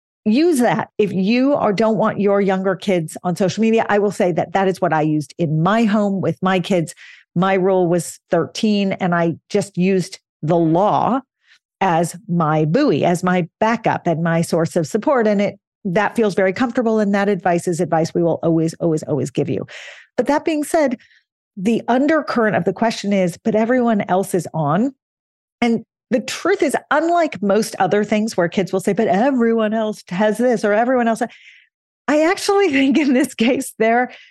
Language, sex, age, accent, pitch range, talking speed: English, female, 40-59, American, 175-225 Hz, 190 wpm